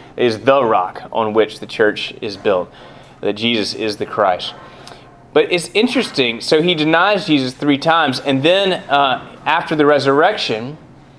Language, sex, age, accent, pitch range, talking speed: English, male, 20-39, American, 115-140 Hz, 155 wpm